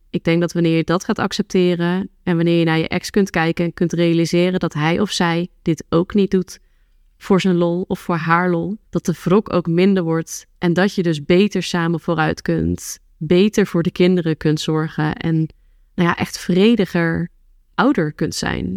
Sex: female